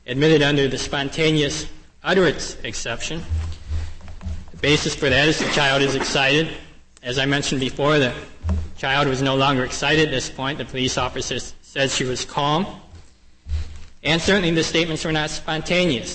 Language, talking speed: English, 155 wpm